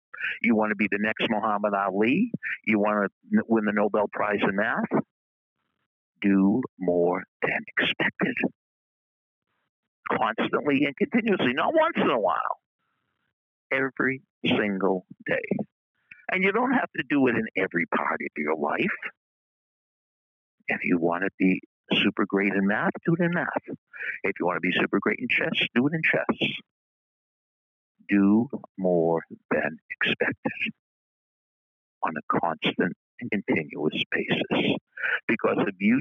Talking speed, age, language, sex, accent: 140 wpm, 50-69, English, male, American